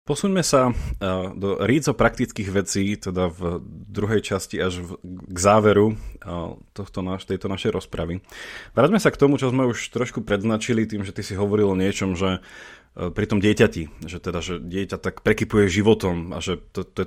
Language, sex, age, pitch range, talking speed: Slovak, male, 30-49, 95-115 Hz, 170 wpm